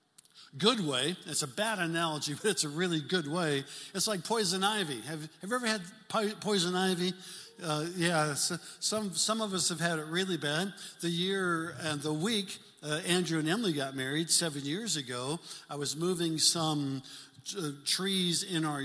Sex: male